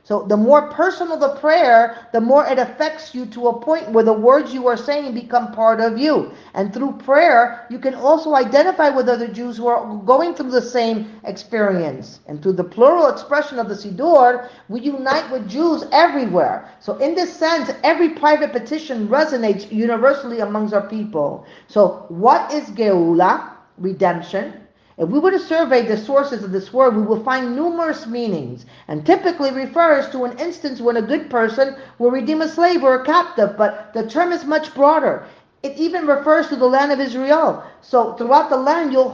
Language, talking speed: English, 185 wpm